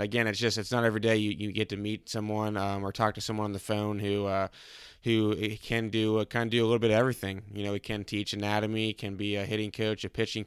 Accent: American